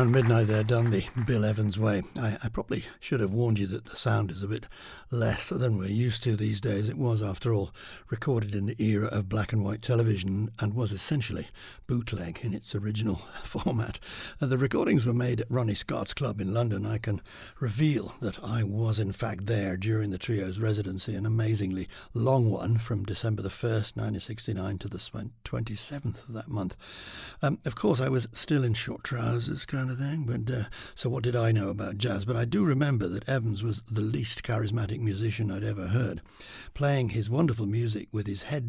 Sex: male